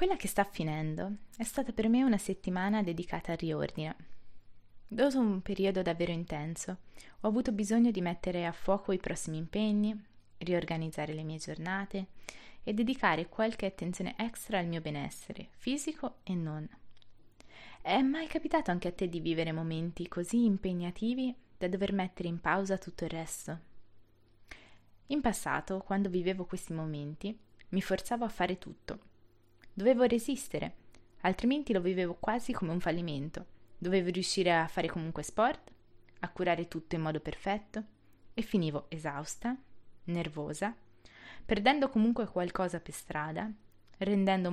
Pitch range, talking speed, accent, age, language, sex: 160-215 Hz, 140 wpm, native, 20-39, Italian, female